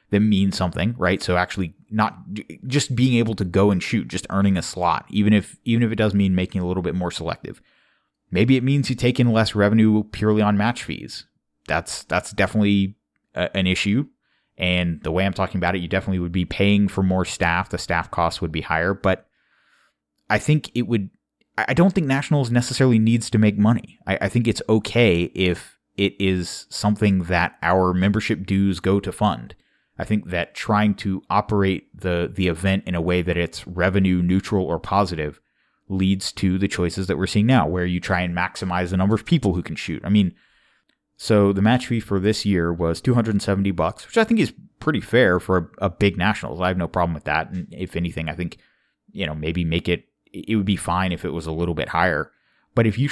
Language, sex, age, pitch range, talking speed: English, male, 30-49, 90-105 Hz, 215 wpm